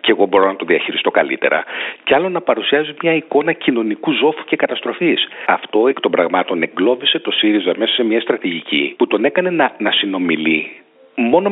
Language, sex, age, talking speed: Greek, male, 40-59, 180 wpm